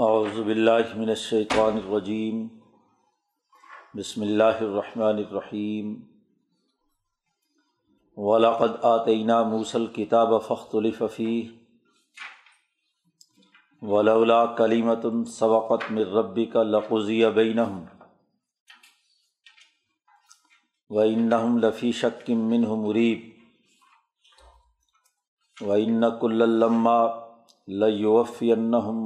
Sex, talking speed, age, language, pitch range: male, 55 wpm, 50-69, Urdu, 110-120 Hz